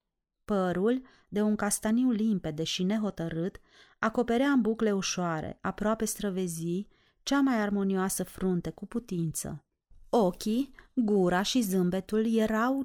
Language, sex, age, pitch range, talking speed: Romanian, female, 30-49, 180-220 Hz, 110 wpm